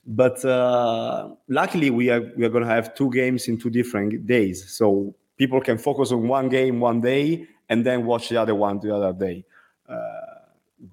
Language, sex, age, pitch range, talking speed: English, male, 30-49, 100-120 Hz, 190 wpm